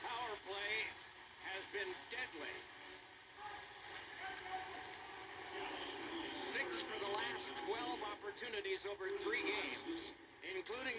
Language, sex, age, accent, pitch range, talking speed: English, male, 50-69, American, 330-420 Hz, 80 wpm